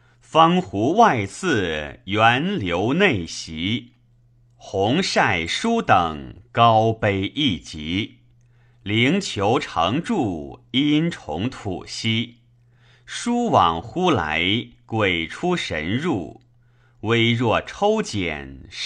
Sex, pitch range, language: male, 110-140 Hz, Chinese